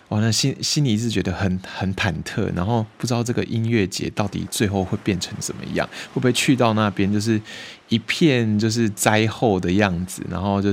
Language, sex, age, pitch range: Chinese, male, 20-39, 90-110 Hz